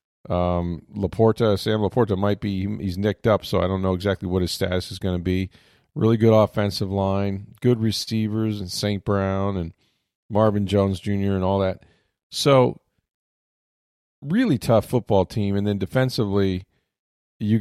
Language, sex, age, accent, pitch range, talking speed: English, male, 40-59, American, 95-115 Hz, 155 wpm